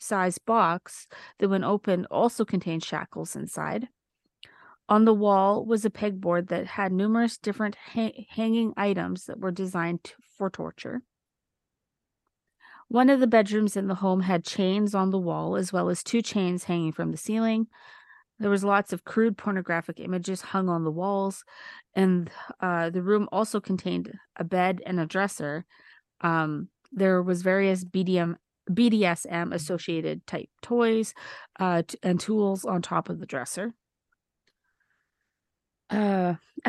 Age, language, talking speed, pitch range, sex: 30-49, English, 145 wpm, 180-220 Hz, female